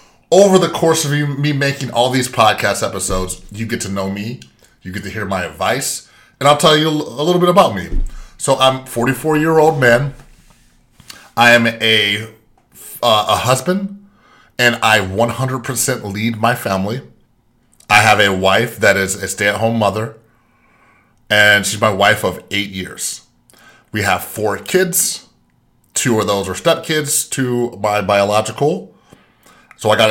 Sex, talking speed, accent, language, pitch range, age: male, 155 wpm, American, English, 105-130 Hz, 30-49